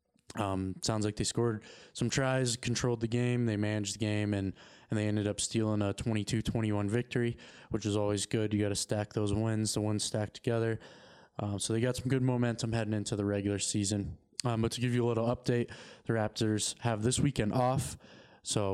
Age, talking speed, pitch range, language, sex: 20-39, 205 wpm, 105-120 Hz, English, male